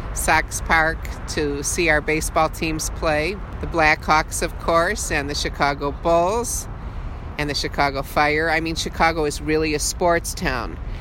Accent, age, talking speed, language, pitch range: American, 50-69, 155 wpm, English, 145-170 Hz